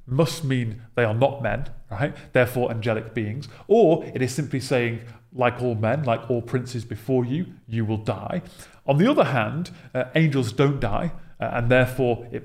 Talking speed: 185 wpm